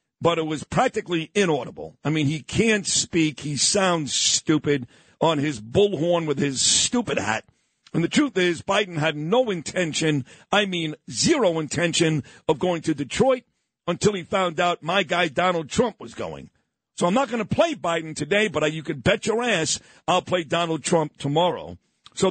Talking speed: 180 wpm